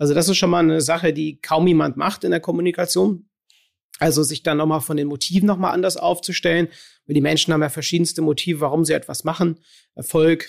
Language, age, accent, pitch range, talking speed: German, 30-49, German, 155-180 Hz, 205 wpm